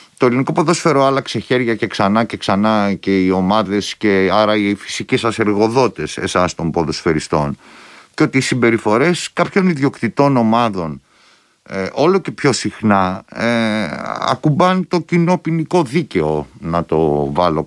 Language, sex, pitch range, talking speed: Greek, male, 100-150 Hz, 145 wpm